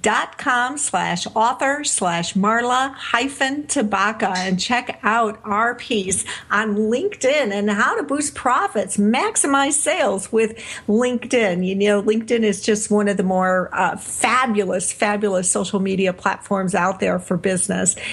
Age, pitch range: 50-69, 190-225 Hz